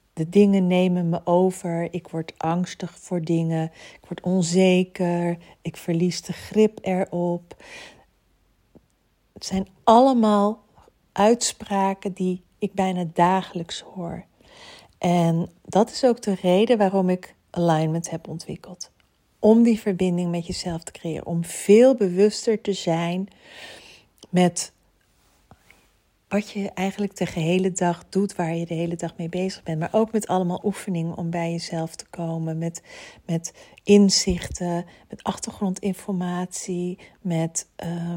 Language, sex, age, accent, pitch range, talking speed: Dutch, female, 40-59, Dutch, 170-200 Hz, 130 wpm